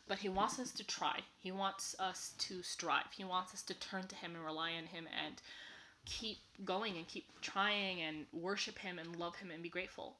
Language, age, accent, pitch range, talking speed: English, 20-39, American, 160-195 Hz, 220 wpm